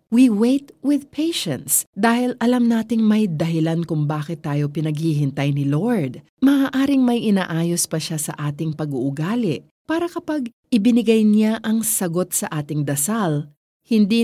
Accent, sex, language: native, female, Filipino